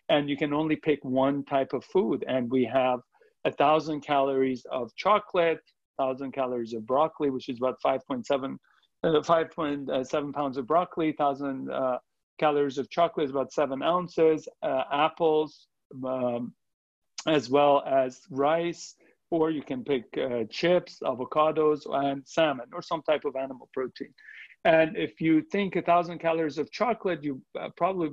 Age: 50-69